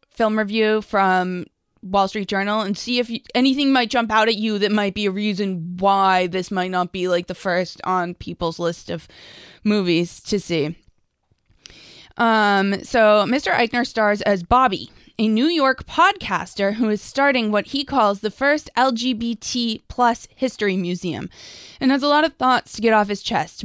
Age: 20-39